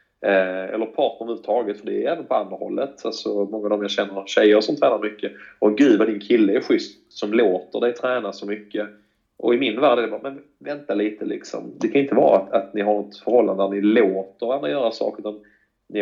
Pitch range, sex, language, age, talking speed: 100-120 Hz, male, Swedish, 30-49, 230 wpm